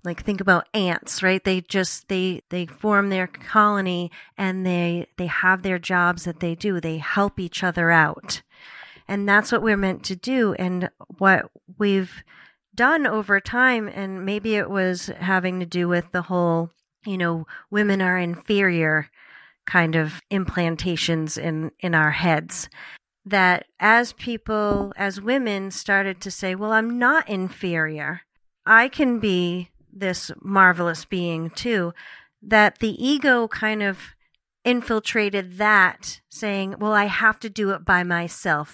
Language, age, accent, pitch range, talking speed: English, 40-59, American, 175-210 Hz, 150 wpm